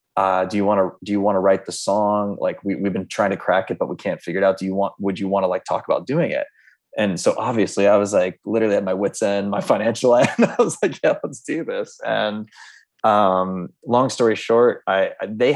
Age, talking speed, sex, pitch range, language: 20-39, 255 wpm, male, 95-115 Hz, English